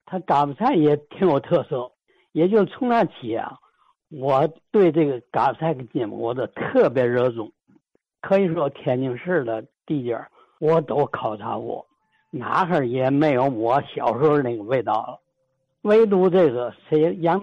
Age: 60-79